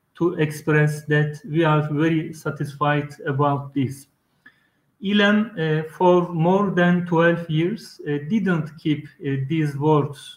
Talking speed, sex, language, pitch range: 120 wpm, male, Turkish, 150-170 Hz